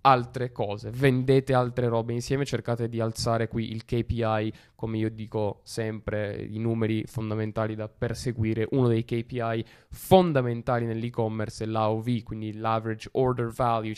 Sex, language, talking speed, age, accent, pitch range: male, Italian, 135 wpm, 20-39, native, 110-135 Hz